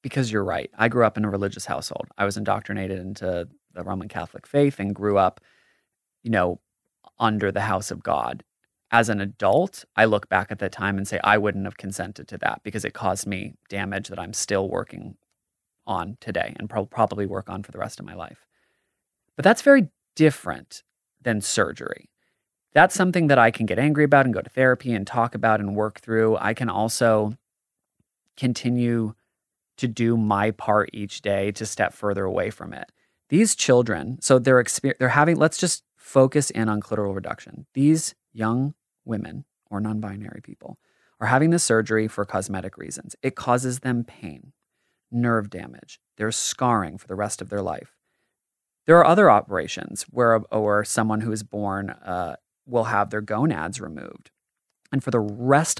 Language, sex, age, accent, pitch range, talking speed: English, male, 30-49, American, 100-125 Hz, 180 wpm